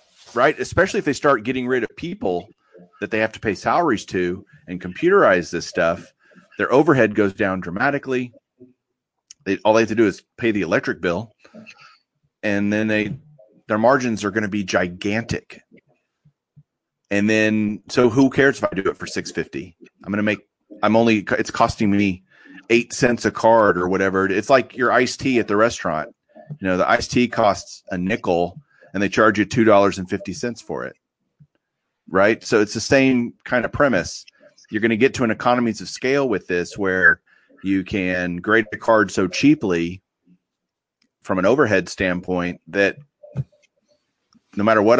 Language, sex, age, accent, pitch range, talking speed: English, male, 30-49, American, 95-125 Hz, 175 wpm